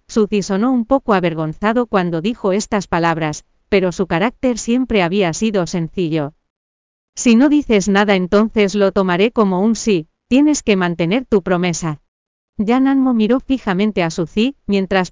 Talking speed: 145 wpm